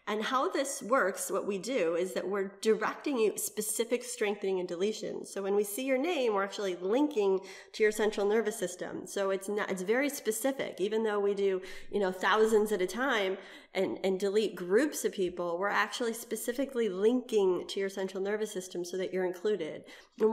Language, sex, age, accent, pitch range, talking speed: English, female, 30-49, American, 195-240 Hz, 195 wpm